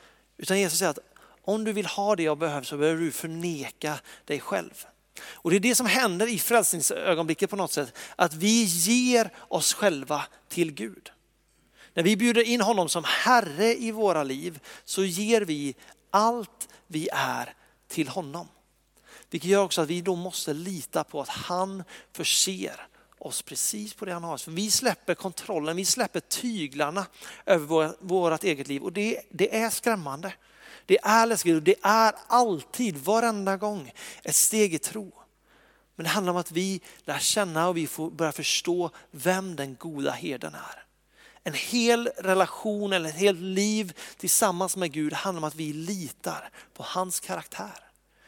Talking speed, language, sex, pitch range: 165 wpm, Swedish, male, 160-205 Hz